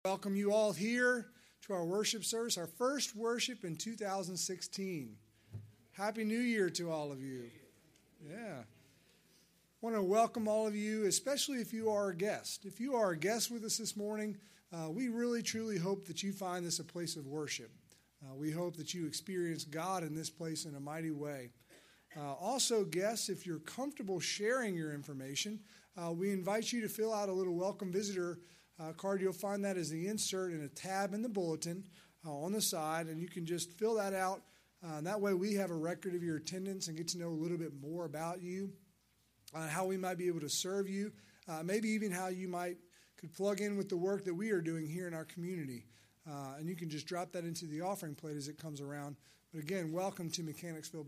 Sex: male